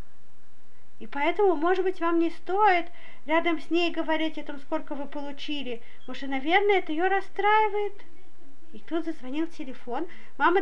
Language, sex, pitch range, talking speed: Russian, female, 315-390 Hz, 155 wpm